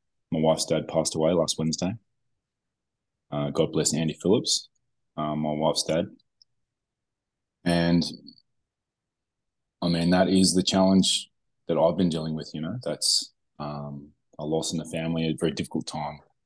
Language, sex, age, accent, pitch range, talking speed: English, male, 20-39, Australian, 80-90 Hz, 145 wpm